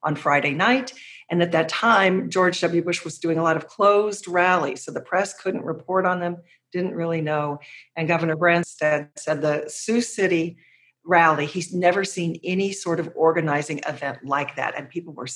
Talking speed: 190 wpm